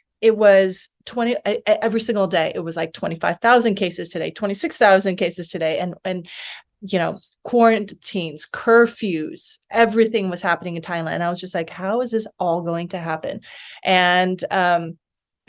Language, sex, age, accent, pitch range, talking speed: English, female, 30-49, American, 180-210 Hz, 155 wpm